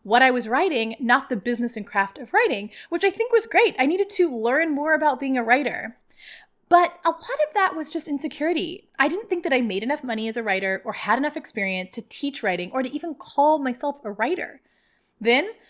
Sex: female